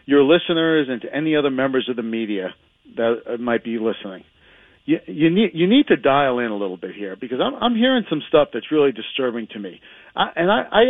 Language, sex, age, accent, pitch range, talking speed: English, male, 40-59, American, 140-200 Hz, 225 wpm